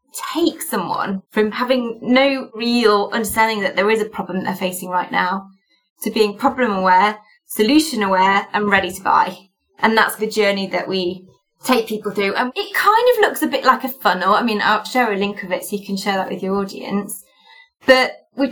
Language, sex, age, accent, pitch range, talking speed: English, female, 20-39, British, 195-260 Hz, 205 wpm